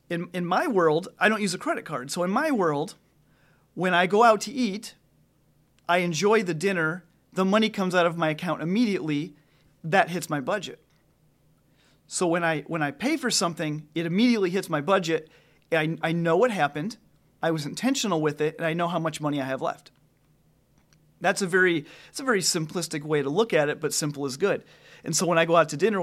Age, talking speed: 40-59, 210 wpm